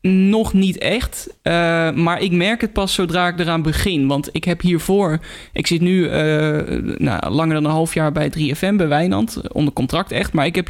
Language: Dutch